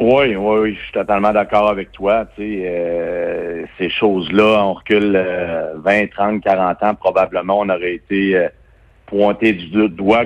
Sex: male